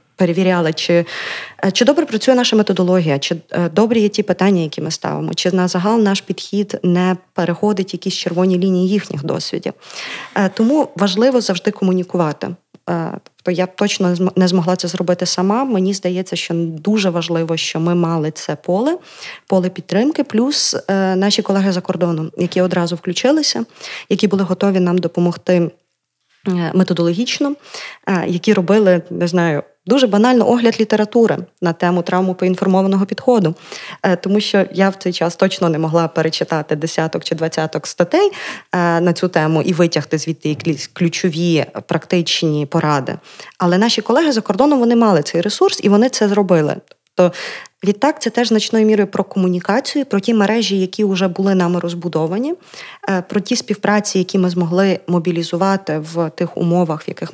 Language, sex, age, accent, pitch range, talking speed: Ukrainian, female, 20-39, native, 175-210 Hz, 150 wpm